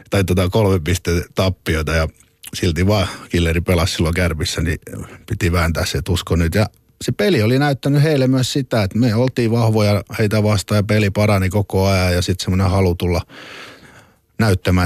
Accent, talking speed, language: native, 180 wpm, Finnish